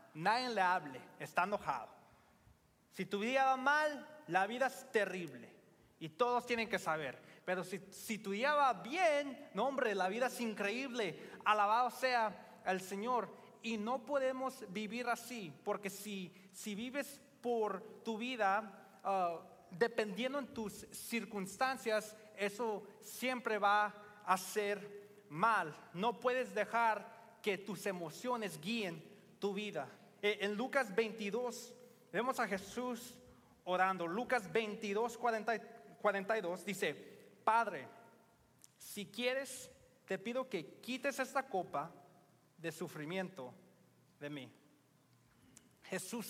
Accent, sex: Mexican, male